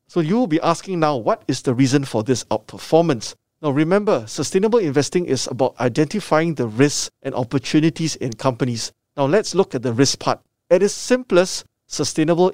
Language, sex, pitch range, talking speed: English, male, 125-160 Hz, 175 wpm